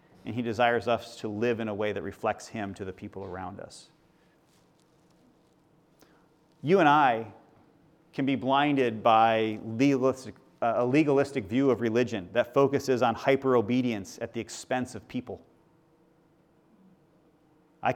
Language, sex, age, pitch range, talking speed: English, male, 30-49, 125-160 Hz, 130 wpm